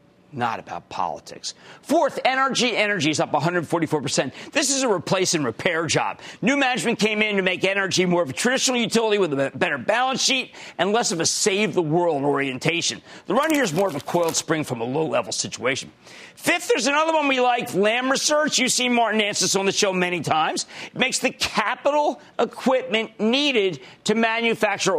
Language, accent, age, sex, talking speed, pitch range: English, American, 40-59, male, 185 wpm, 170-245 Hz